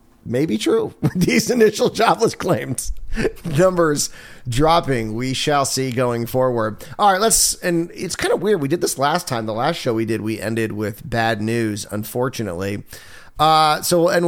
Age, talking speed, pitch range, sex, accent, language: 30-49, 170 wpm, 115-165 Hz, male, American, English